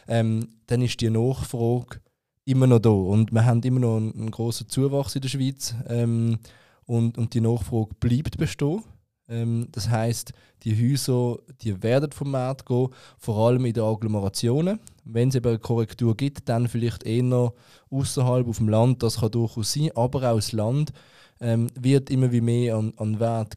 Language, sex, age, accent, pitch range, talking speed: German, male, 20-39, German, 115-130 Hz, 180 wpm